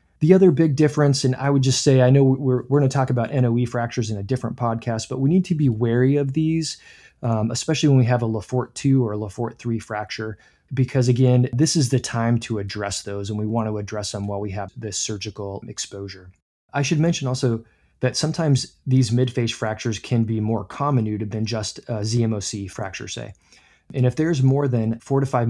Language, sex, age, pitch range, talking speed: English, male, 20-39, 110-130 Hz, 215 wpm